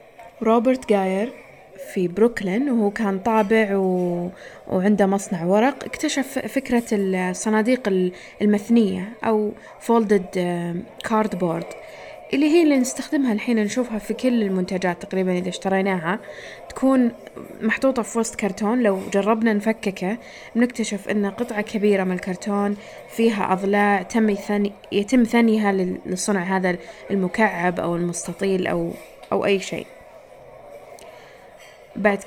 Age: 20-39